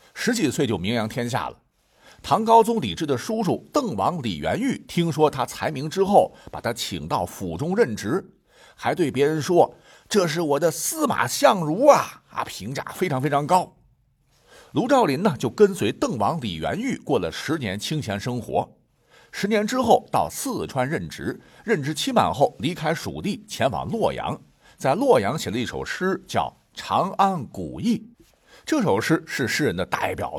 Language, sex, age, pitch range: Chinese, male, 50-69, 135-230 Hz